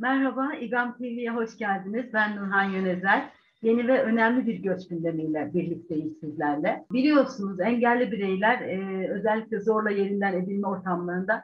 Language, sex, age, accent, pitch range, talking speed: Turkish, female, 50-69, native, 190-245 Hz, 125 wpm